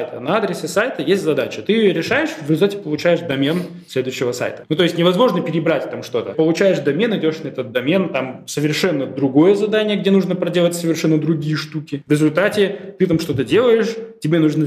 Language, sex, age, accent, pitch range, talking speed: Russian, male, 20-39, native, 135-180 Hz, 190 wpm